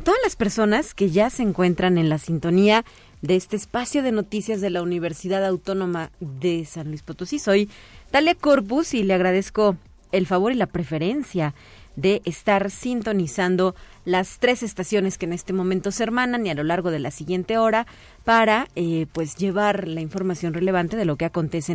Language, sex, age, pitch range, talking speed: Spanish, female, 30-49, 175-230 Hz, 180 wpm